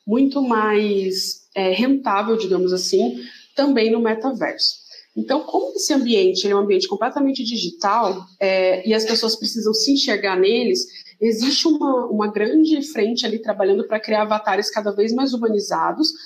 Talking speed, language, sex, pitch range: 150 wpm, Portuguese, female, 205-275 Hz